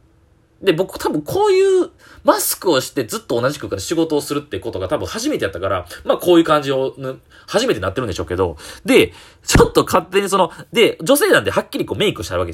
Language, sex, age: Japanese, male, 30-49